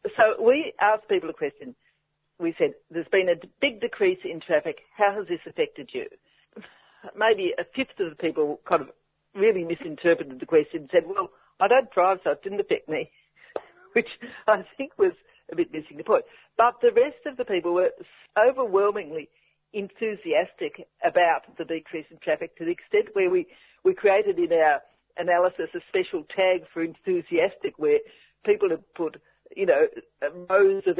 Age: 60-79